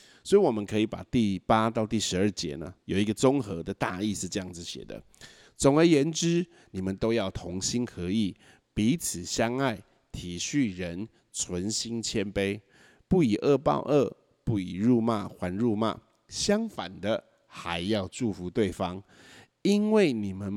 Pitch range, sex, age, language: 90-120 Hz, male, 50-69, Chinese